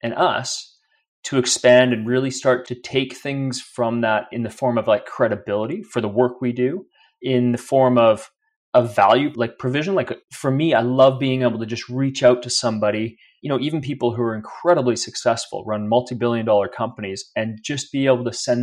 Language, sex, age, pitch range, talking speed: English, male, 30-49, 115-140 Hz, 205 wpm